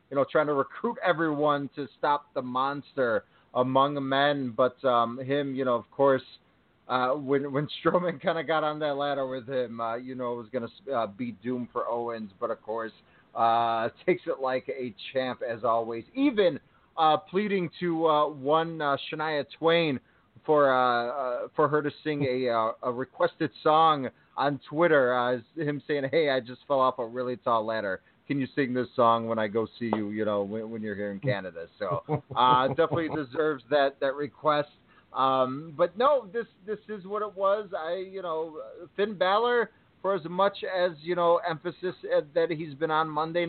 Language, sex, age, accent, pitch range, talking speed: English, male, 30-49, American, 130-180 Hz, 195 wpm